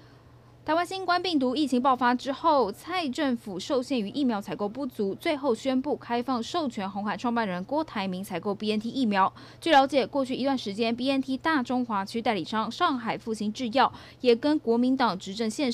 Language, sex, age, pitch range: Chinese, female, 10-29, 205-275 Hz